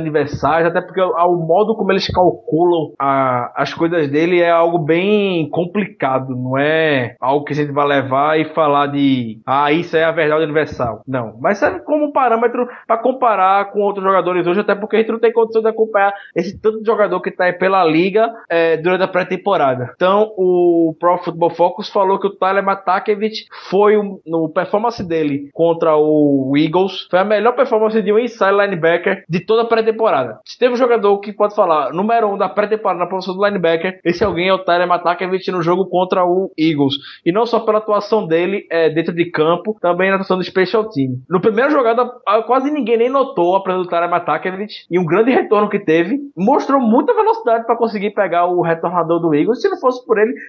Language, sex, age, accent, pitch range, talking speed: Portuguese, male, 20-39, Brazilian, 170-220 Hz, 205 wpm